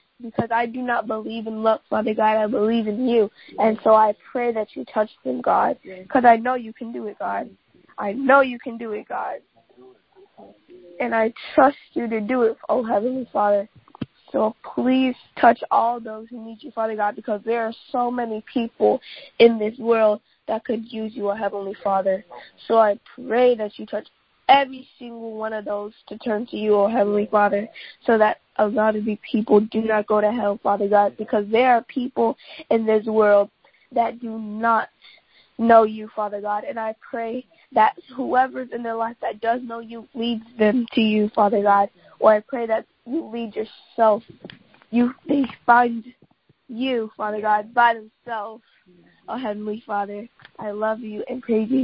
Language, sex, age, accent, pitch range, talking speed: English, female, 10-29, American, 210-240 Hz, 185 wpm